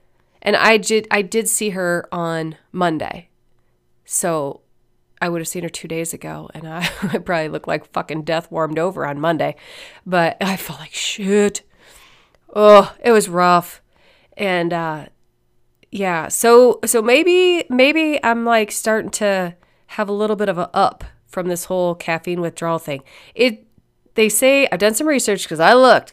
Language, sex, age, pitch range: English, female, 30-49, 160-210 Hz